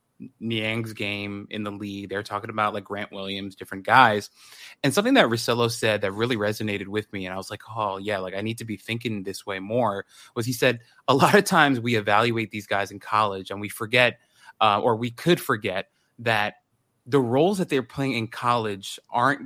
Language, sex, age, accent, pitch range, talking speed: English, male, 20-39, American, 105-125 Hz, 210 wpm